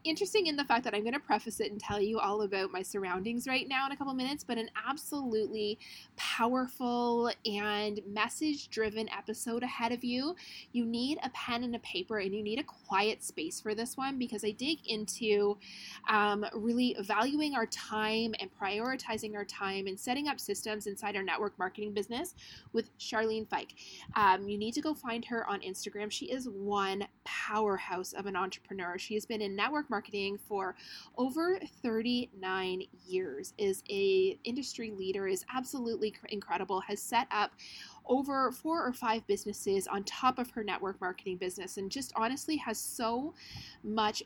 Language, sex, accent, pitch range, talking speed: English, female, American, 200-250 Hz, 175 wpm